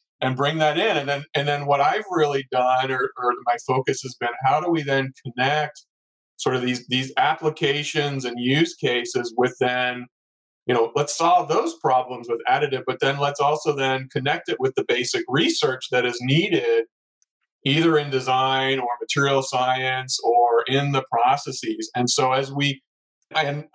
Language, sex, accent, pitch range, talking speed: English, male, American, 125-155 Hz, 175 wpm